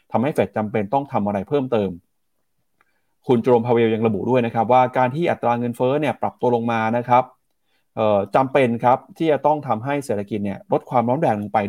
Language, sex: Thai, male